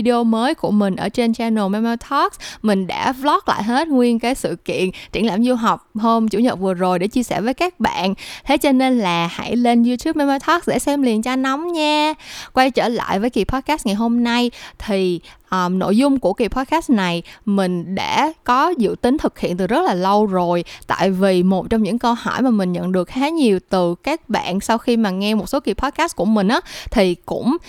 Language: Vietnamese